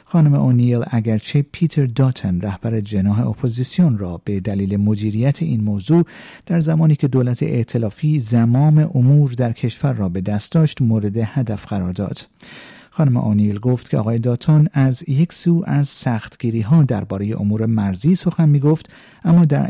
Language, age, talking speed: Persian, 50-69, 150 wpm